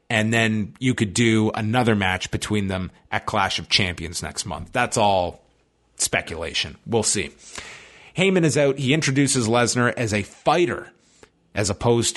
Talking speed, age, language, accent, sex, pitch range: 155 wpm, 30-49, English, American, male, 95-120 Hz